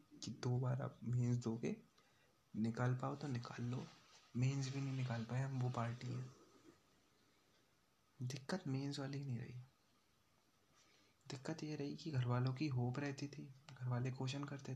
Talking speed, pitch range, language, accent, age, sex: 140 wpm, 120-145 Hz, Hindi, native, 20-39, male